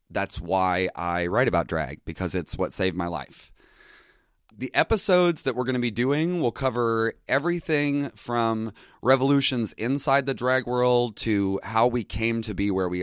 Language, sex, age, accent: English, male, 30-49, American